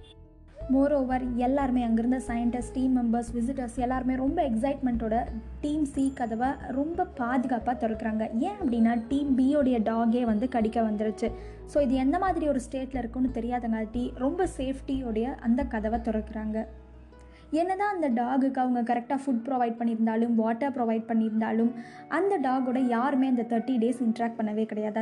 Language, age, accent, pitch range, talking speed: Tamil, 20-39, native, 230-270 Hz, 140 wpm